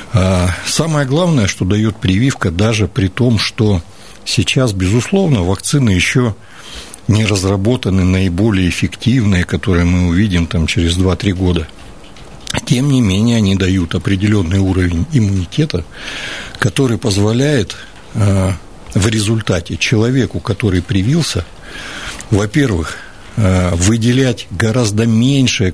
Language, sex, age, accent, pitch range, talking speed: Russian, male, 60-79, native, 90-115 Hz, 100 wpm